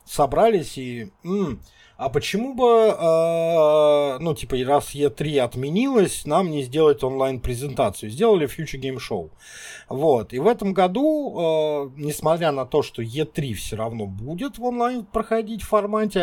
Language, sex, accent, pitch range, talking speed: Russian, male, native, 115-165 Hz, 125 wpm